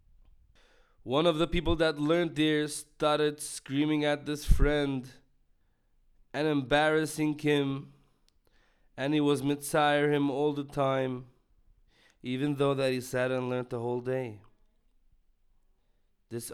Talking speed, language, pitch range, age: 125 wpm, English, 120-145 Hz, 20-39